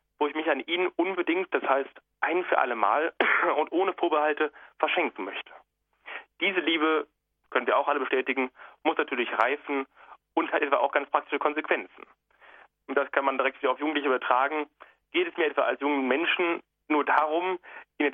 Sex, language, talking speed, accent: male, German, 180 wpm, German